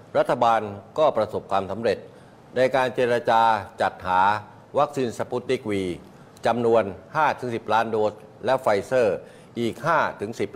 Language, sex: Thai, male